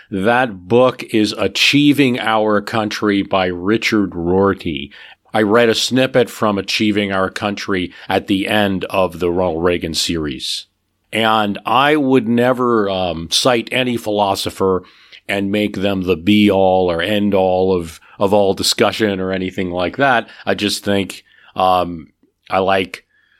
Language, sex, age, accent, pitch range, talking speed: English, male, 40-59, American, 95-110 Hz, 145 wpm